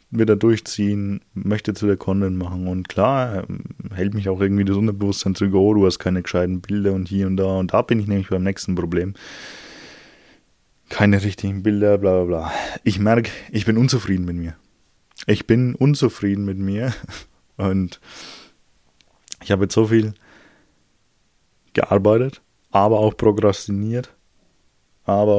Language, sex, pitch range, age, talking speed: German, male, 95-115 Hz, 20-39, 150 wpm